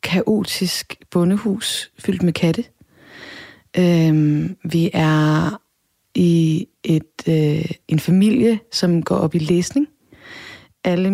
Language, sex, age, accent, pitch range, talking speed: Danish, female, 30-49, native, 155-185 Hz, 100 wpm